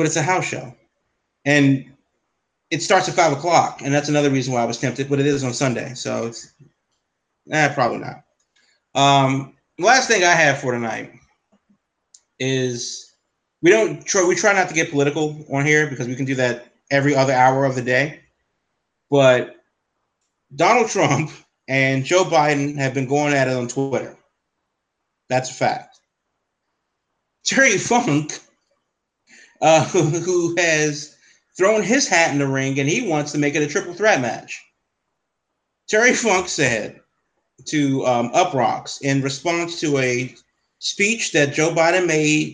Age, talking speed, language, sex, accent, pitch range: 30-49, 155 wpm, English, male, American, 135-170 Hz